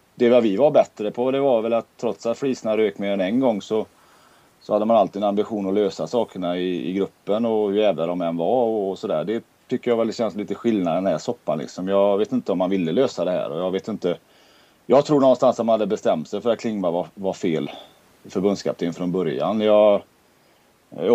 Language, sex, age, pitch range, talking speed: Swedish, male, 30-49, 95-115 Hz, 235 wpm